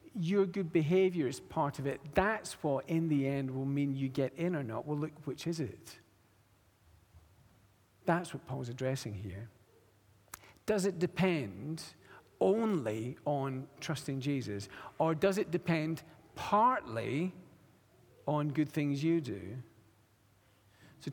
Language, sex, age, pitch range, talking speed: English, male, 50-69, 135-185 Hz, 135 wpm